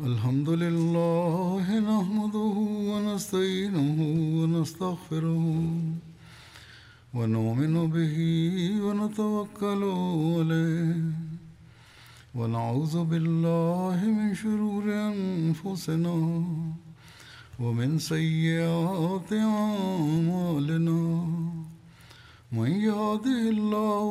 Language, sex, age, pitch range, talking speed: Bulgarian, male, 50-69, 160-205 Hz, 35 wpm